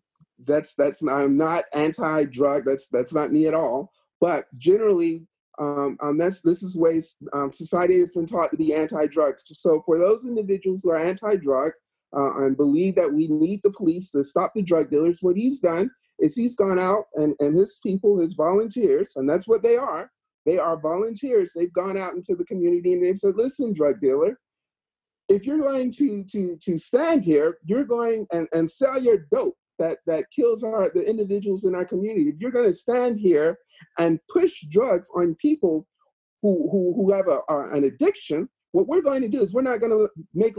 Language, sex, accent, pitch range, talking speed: English, male, American, 165-260 Hz, 200 wpm